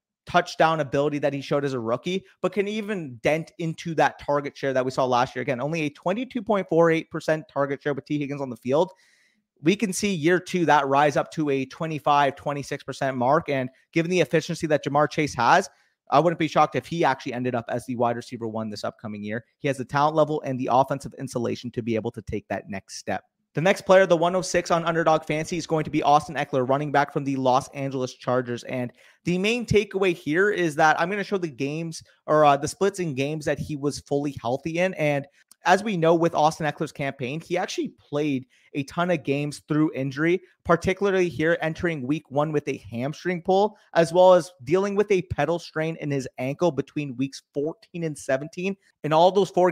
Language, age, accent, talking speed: English, 30-49, American, 215 wpm